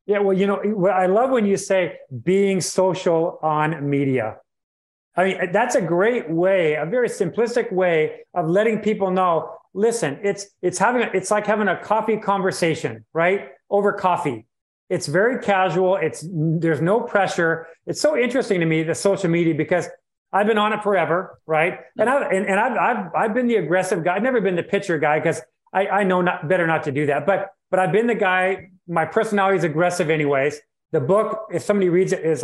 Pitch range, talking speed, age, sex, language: 165-210 Hz, 195 wpm, 30-49, male, English